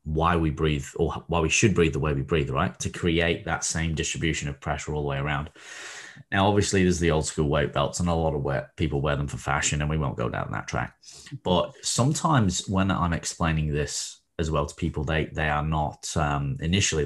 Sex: male